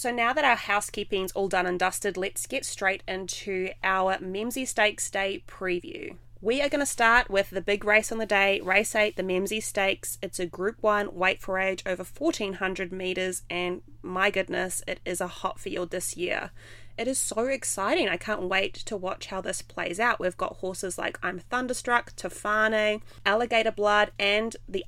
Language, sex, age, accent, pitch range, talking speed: English, female, 20-39, Australian, 175-210 Hz, 190 wpm